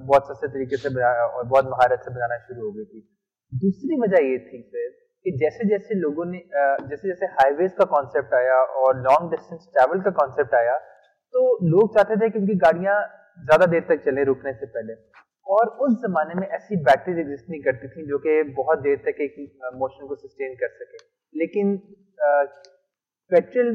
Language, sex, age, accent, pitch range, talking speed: Hindi, male, 30-49, native, 140-210 Hz, 130 wpm